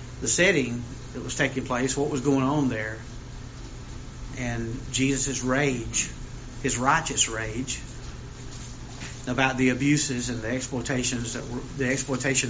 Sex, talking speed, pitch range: male, 130 wpm, 120-135 Hz